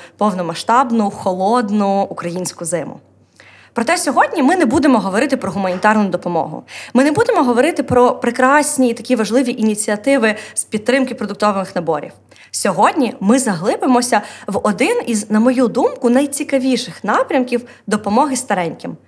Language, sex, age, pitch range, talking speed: Ukrainian, female, 20-39, 210-265 Hz, 125 wpm